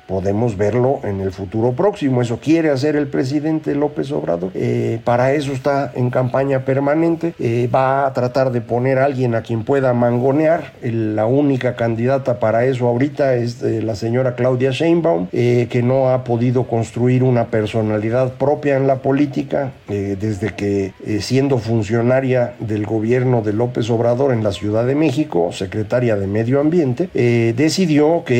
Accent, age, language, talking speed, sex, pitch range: Mexican, 50-69, Spanish, 165 wpm, male, 115-140 Hz